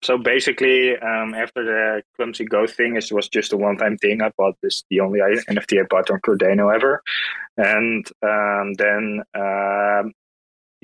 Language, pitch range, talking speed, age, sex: English, 100-115 Hz, 160 wpm, 20-39, male